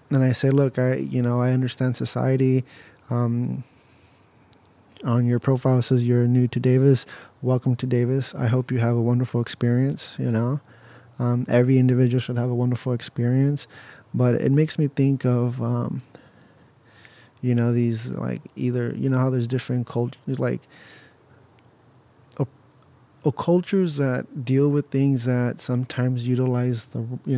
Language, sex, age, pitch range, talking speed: English, male, 30-49, 120-135 Hz, 155 wpm